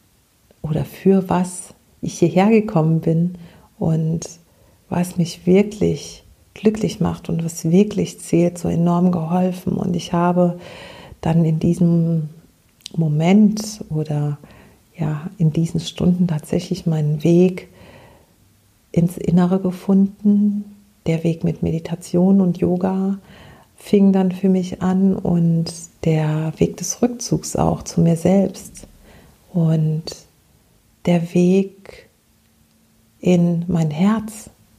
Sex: female